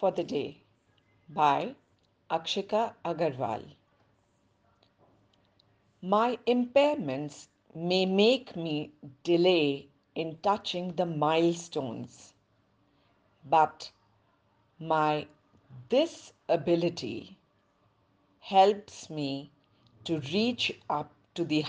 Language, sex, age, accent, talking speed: Hindi, female, 50-69, native, 75 wpm